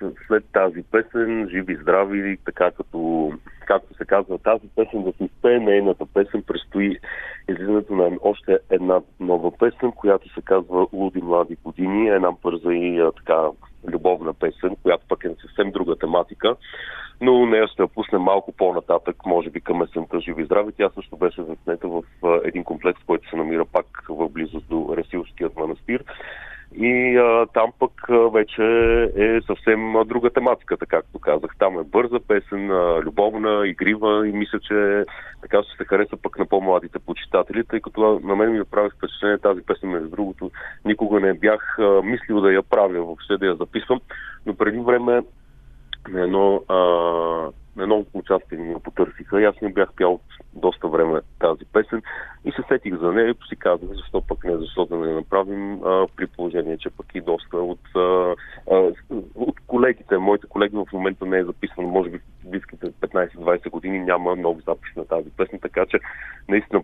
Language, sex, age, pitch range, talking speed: Bulgarian, male, 40-59, 85-110 Hz, 165 wpm